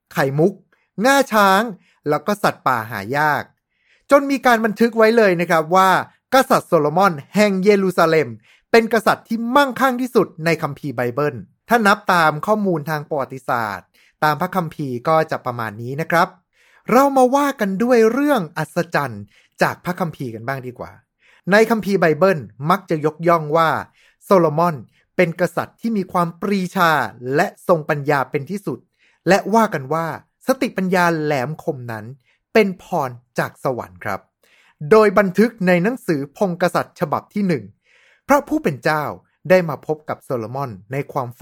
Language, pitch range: Thai, 145-205 Hz